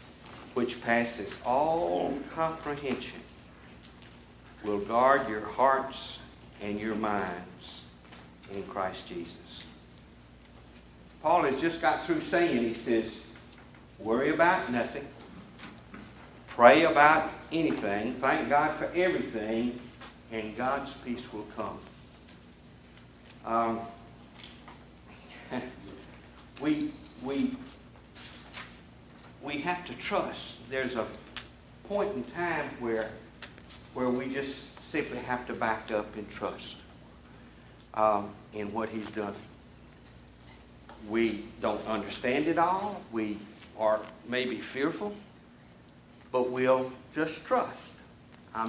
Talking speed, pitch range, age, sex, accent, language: 95 wpm, 80-125 Hz, 60-79, male, American, English